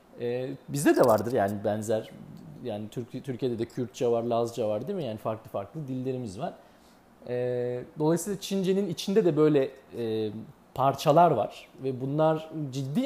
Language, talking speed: Turkish, 150 wpm